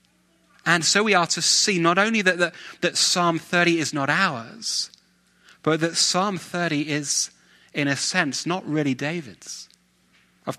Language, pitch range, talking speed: English, 125-175 Hz, 155 wpm